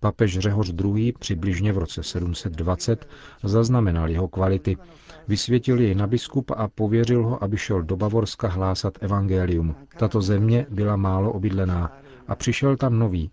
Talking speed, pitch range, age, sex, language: 145 wpm, 95-115 Hz, 40-59, male, Czech